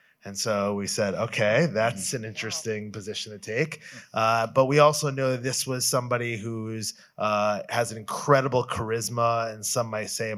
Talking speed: 180 wpm